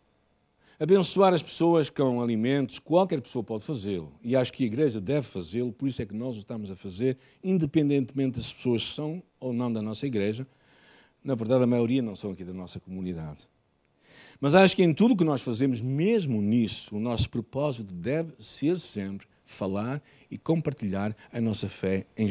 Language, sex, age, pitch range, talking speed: Portuguese, male, 60-79, 110-155 Hz, 185 wpm